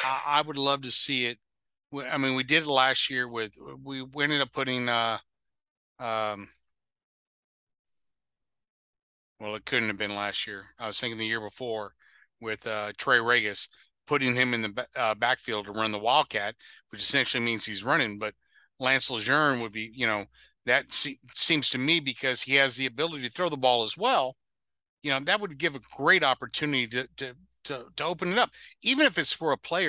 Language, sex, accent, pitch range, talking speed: English, male, American, 120-165 Hz, 195 wpm